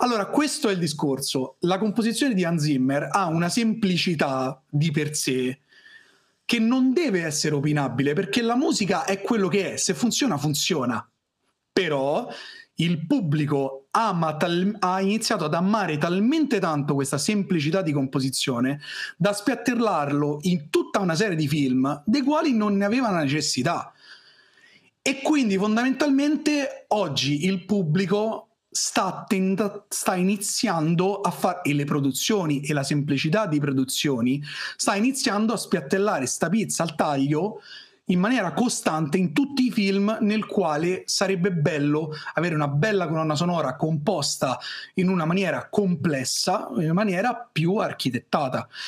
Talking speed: 140 wpm